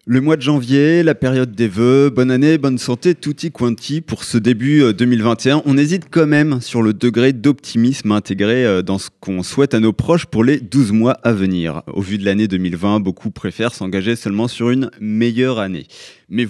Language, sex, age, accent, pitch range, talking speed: French, male, 30-49, French, 110-140 Hz, 200 wpm